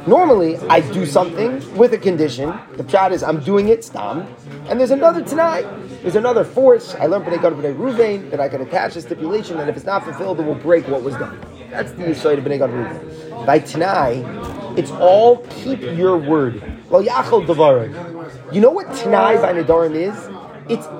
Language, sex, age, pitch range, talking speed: English, male, 30-49, 165-235 Hz, 185 wpm